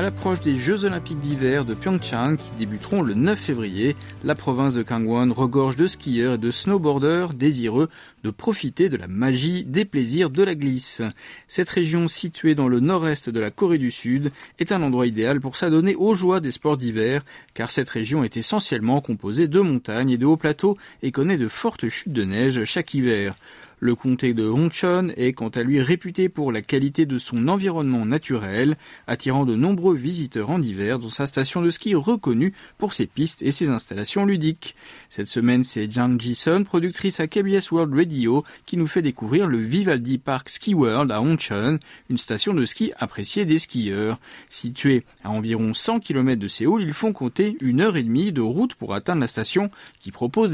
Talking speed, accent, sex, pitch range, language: 190 wpm, French, male, 120-175 Hz, French